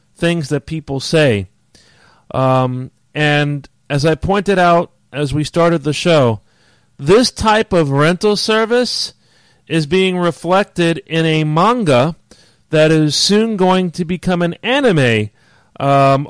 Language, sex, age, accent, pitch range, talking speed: English, male, 40-59, American, 145-180 Hz, 130 wpm